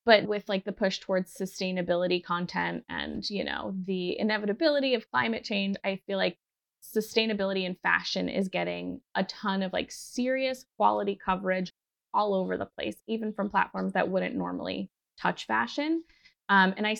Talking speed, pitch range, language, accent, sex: 160 wpm, 180-215 Hz, English, American, female